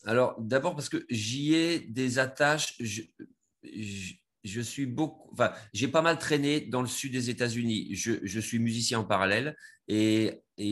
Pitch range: 100-130 Hz